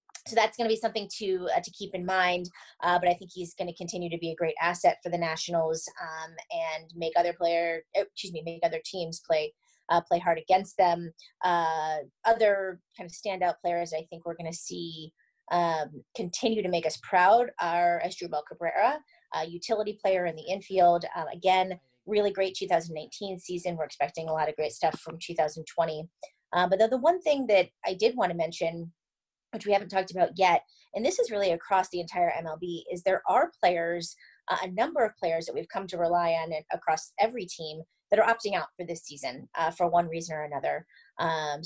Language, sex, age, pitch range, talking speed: English, female, 30-49, 165-190 Hz, 210 wpm